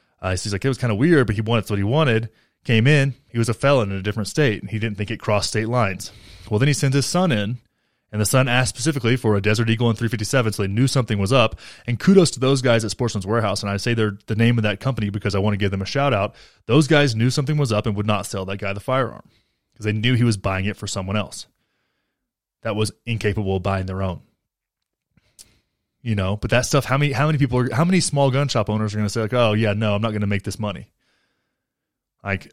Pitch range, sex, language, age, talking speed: 105-130 Hz, male, English, 20-39, 270 wpm